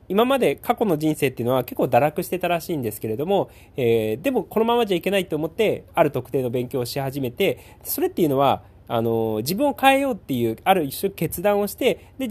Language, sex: Japanese, male